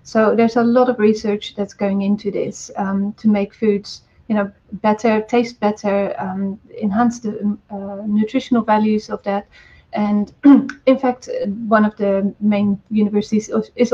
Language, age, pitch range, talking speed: English, 30-49, 205-225 Hz, 155 wpm